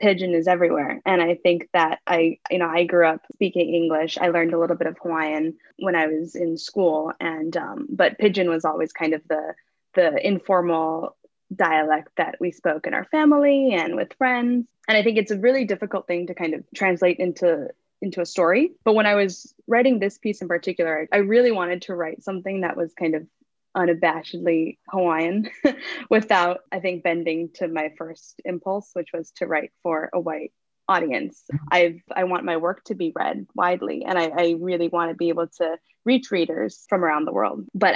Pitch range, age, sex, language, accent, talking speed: 170-205 Hz, 10-29, female, English, American, 200 wpm